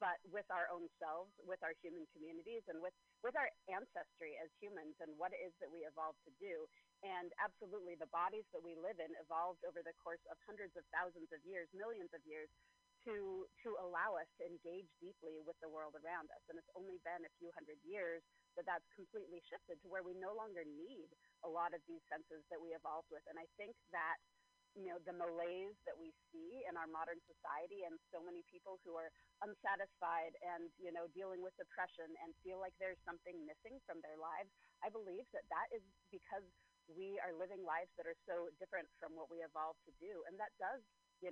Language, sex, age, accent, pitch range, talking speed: English, female, 40-59, American, 165-210 Hz, 210 wpm